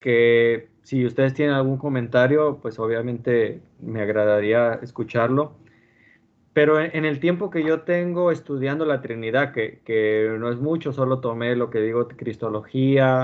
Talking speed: 145 wpm